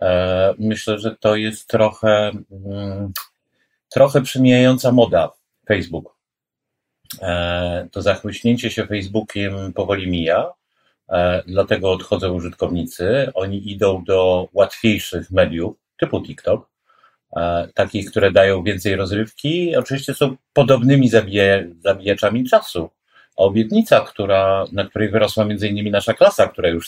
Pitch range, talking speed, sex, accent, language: 100-125 Hz, 105 wpm, male, native, Polish